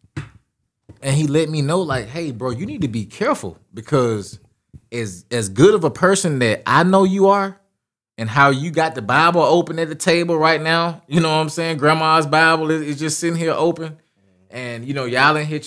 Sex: male